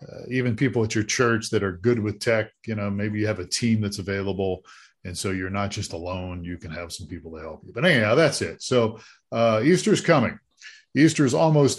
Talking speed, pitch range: 225 wpm, 100-130 Hz